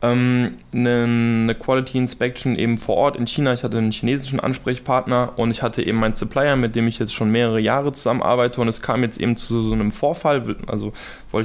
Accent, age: German, 20-39